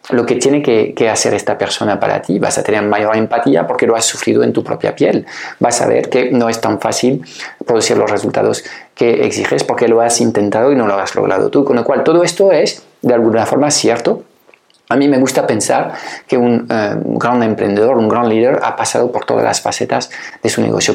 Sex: male